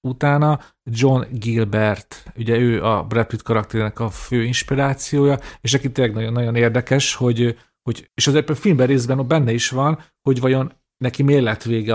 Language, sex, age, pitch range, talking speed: Hungarian, male, 40-59, 115-140 Hz, 160 wpm